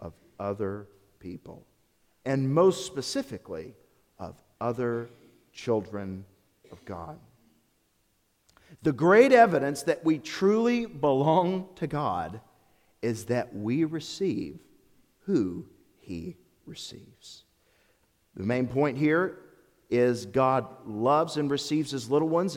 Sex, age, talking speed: male, 50-69, 100 wpm